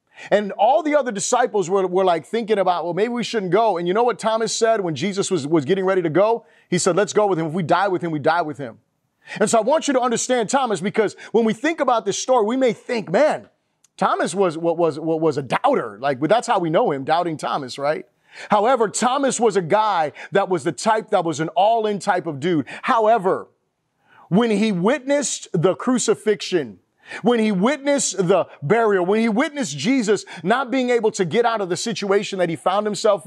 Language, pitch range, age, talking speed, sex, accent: English, 185-235 Hz, 30-49, 220 wpm, male, American